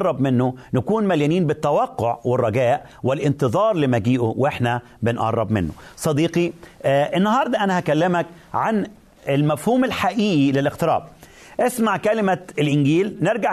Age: 40-59